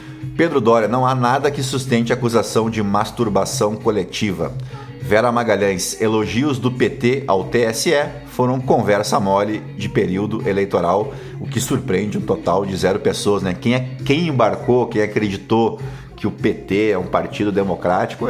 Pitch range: 100-130 Hz